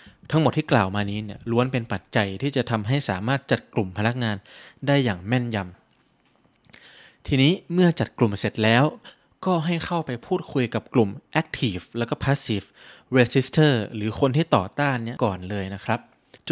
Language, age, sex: Thai, 20-39, male